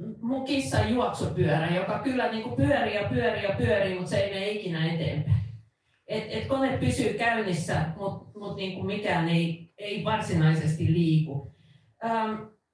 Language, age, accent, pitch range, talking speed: Finnish, 40-59, native, 160-200 Hz, 145 wpm